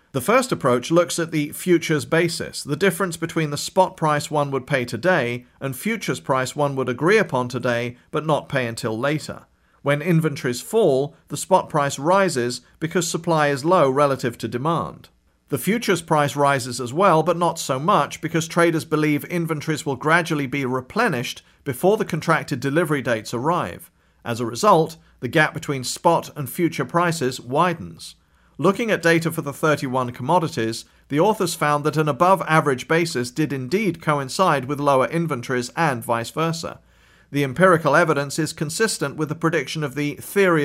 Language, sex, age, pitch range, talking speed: English, male, 40-59, 130-170 Hz, 170 wpm